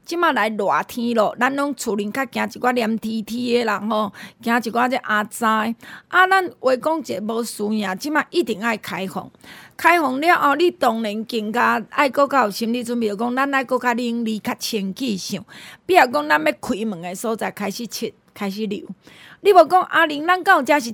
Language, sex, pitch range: Chinese, female, 220-290 Hz